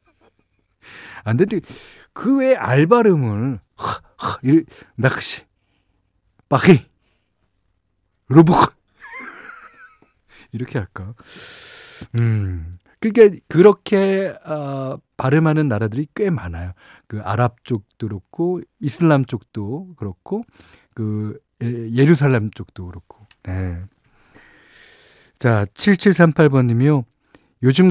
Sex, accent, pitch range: male, native, 105-145 Hz